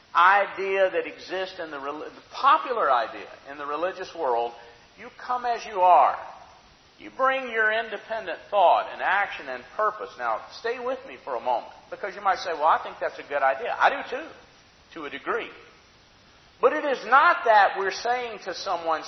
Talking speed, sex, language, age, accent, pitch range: 185 wpm, male, English, 50-69, American, 185-255 Hz